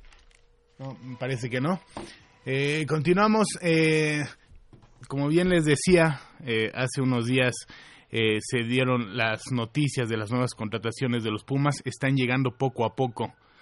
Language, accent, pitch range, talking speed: Spanish, Mexican, 115-140 Hz, 140 wpm